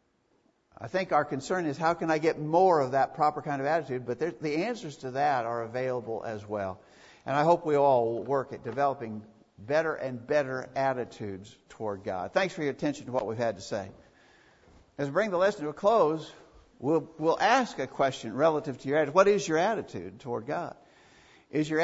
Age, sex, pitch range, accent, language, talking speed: 60-79, male, 120-155 Hz, American, English, 205 wpm